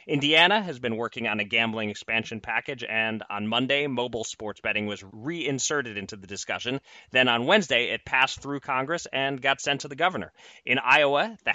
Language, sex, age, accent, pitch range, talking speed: English, male, 30-49, American, 110-135 Hz, 185 wpm